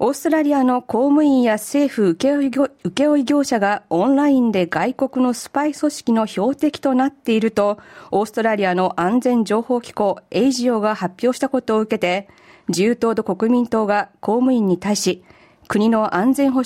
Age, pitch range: 50-69, 200-255 Hz